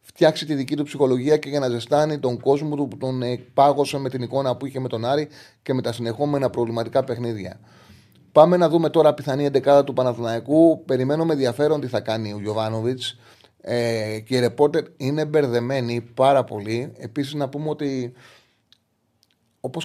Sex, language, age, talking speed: male, Greek, 30-49, 170 wpm